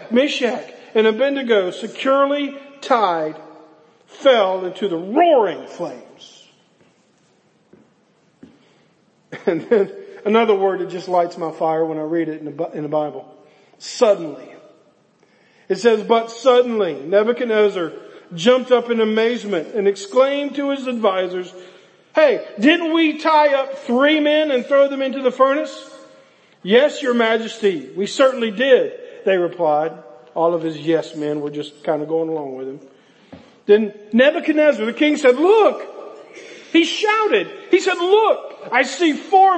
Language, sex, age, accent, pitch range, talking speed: English, male, 50-69, American, 200-310 Hz, 135 wpm